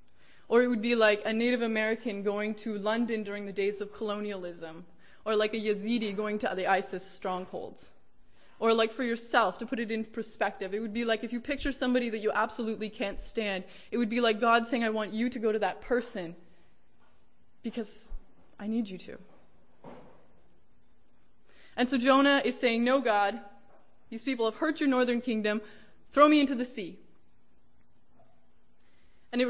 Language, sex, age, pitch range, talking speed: English, female, 20-39, 200-235 Hz, 175 wpm